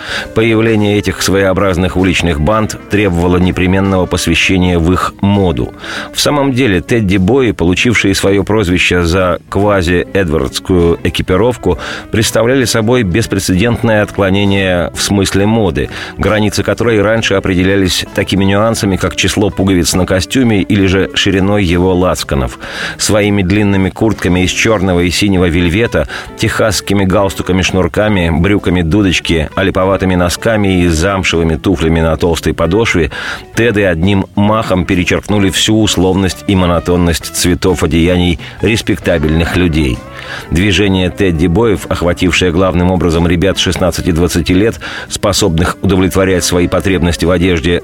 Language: Russian